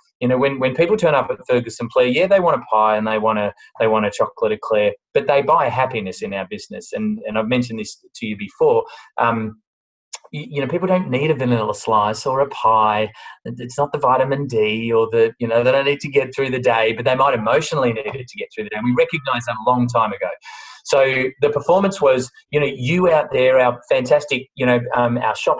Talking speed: 240 wpm